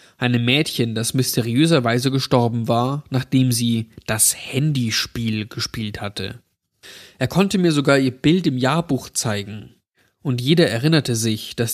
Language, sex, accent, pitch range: German, male, German, 115-140 Hz